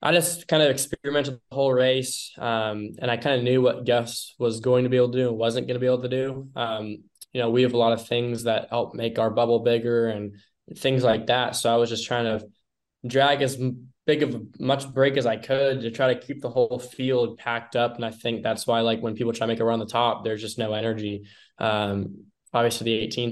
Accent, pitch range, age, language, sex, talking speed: American, 110-125 Hz, 10-29, English, male, 250 wpm